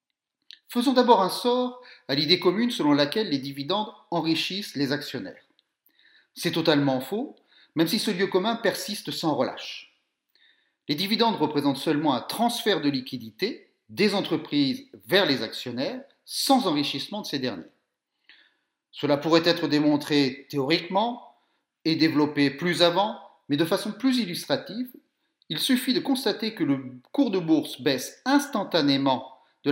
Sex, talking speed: male, 140 wpm